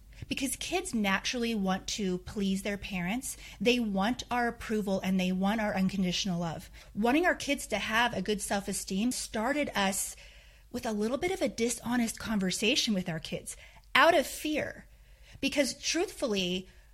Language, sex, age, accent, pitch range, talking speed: English, female, 30-49, American, 195-250 Hz, 155 wpm